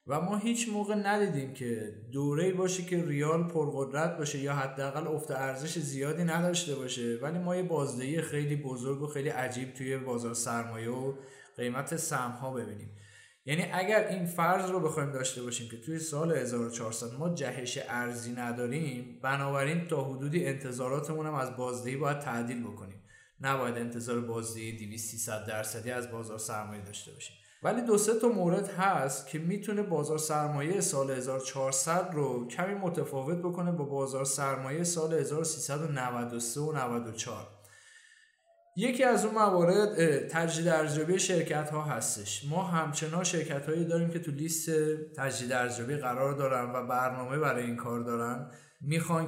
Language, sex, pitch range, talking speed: Persian, male, 125-160 Hz, 145 wpm